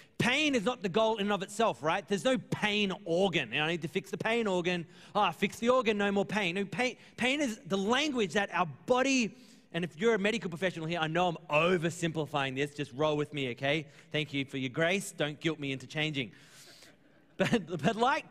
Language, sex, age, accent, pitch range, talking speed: English, male, 30-49, Australian, 155-215 Hz, 215 wpm